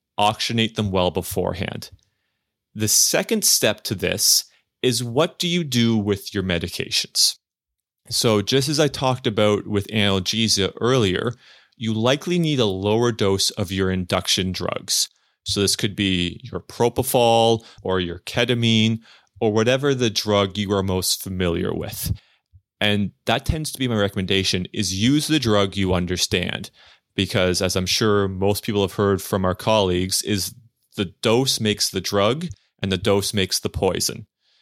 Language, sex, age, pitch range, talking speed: English, male, 30-49, 95-115 Hz, 155 wpm